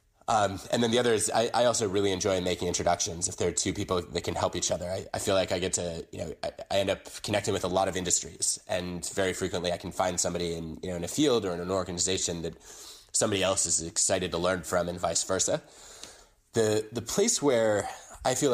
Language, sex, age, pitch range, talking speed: English, male, 20-39, 90-105 Hz, 245 wpm